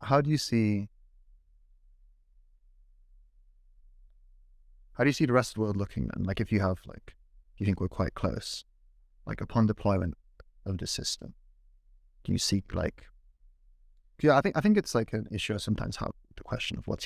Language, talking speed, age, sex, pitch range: English, 180 wpm, 30-49, male, 75-110 Hz